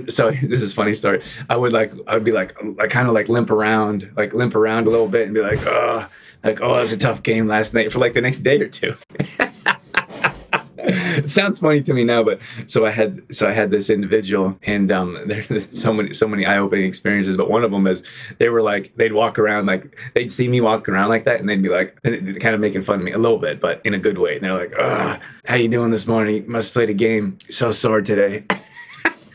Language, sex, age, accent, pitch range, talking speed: English, male, 20-39, American, 105-120 Hz, 245 wpm